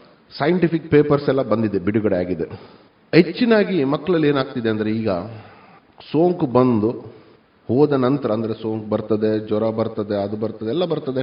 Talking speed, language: 130 wpm, Kannada